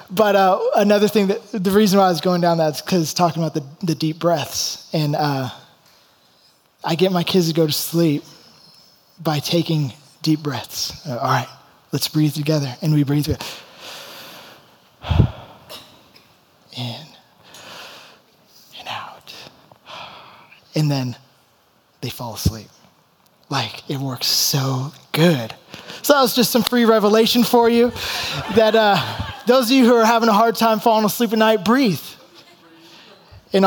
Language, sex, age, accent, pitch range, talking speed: English, male, 20-39, American, 150-215 Hz, 150 wpm